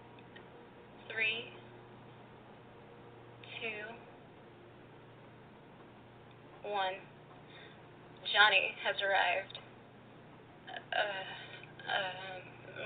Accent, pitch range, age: American, 135-220 Hz, 20-39